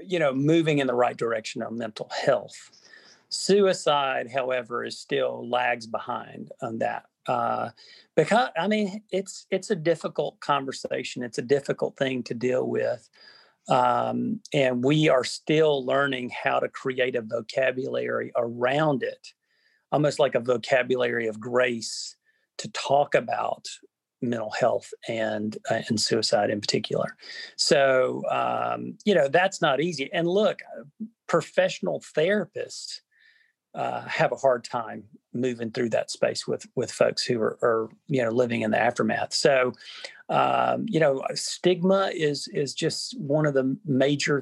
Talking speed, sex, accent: 145 wpm, male, American